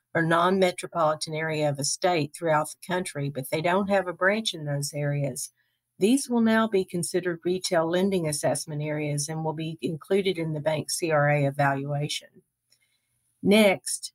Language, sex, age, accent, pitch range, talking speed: English, female, 50-69, American, 145-180 Hz, 155 wpm